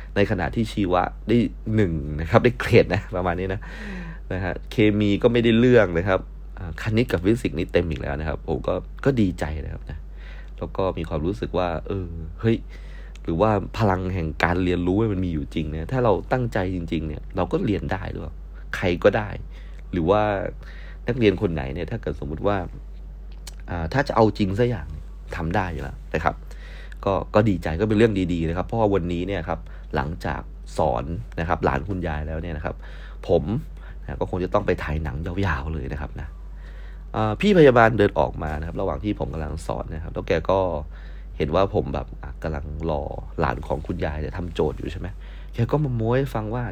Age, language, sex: 30-49, Thai, male